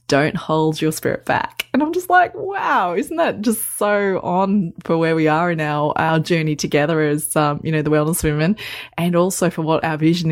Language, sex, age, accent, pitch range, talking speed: English, female, 20-39, Australian, 155-190 Hz, 215 wpm